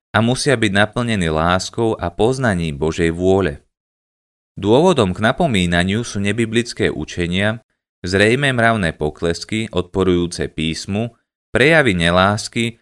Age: 30-49